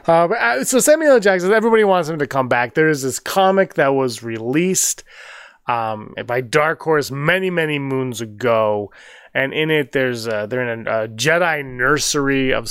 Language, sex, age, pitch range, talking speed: English, male, 20-39, 120-165 Hz, 175 wpm